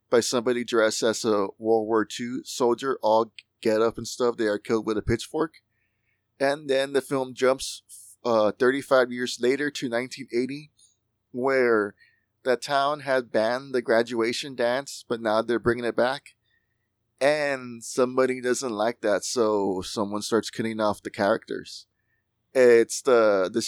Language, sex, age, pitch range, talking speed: English, male, 20-39, 110-130 Hz, 150 wpm